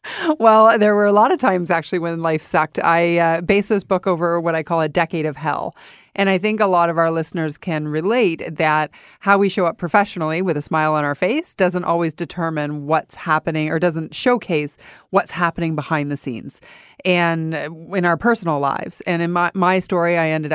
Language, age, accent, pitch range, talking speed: English, 40-59, American, 155-190 Hz, 205 wpm